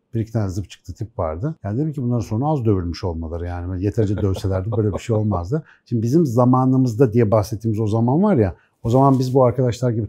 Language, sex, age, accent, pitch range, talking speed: Turkish, male, 60-79, native, 105-135 Hz, 210 wpm